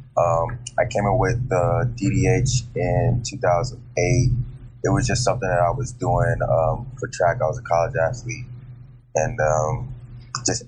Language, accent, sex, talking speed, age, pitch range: English, American, male, 165 wpm, 20-39, 120-125 Hz